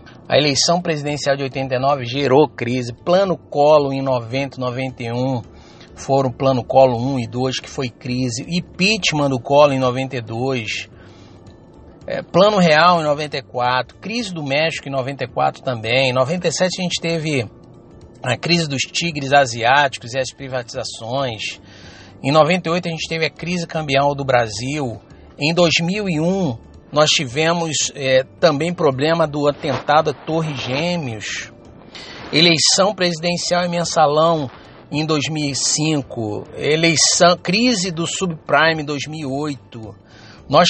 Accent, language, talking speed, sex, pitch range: Brazilian, English, 125 wpm, male, 130-165 Hz